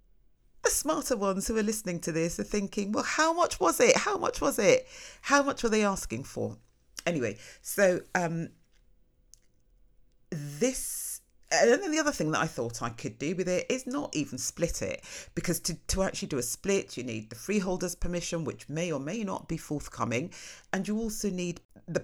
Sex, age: female, 40-59